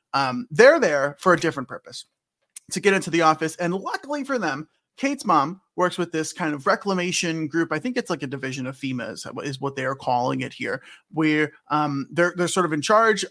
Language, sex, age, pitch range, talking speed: English, male, 30-49, 150-215 Hz, 220 wpm